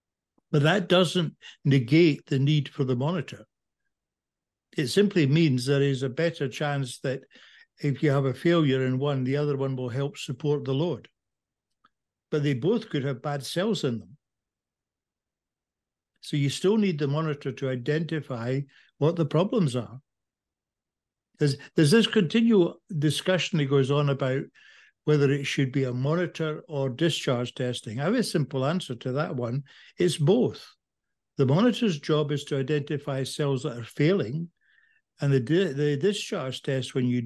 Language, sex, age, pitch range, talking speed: English, male, 60-79, 135-165 Hz, 160 wpm